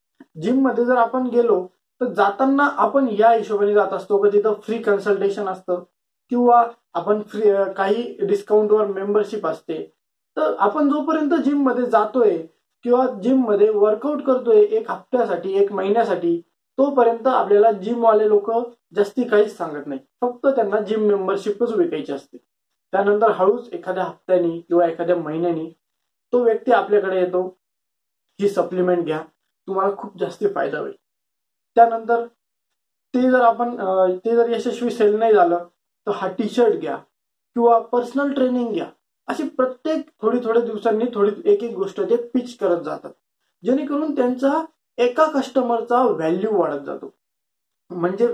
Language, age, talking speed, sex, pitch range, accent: Marathi, 20-39, 115 wpm, male, 190-245 Hz, native